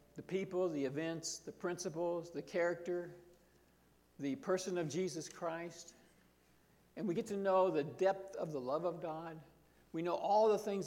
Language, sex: English, male